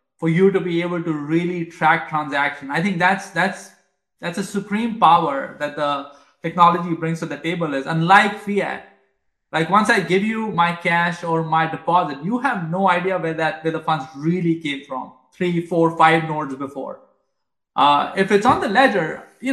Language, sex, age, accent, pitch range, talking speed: English, male, 20-39, Indian, 150-180 Hz, 185 wpm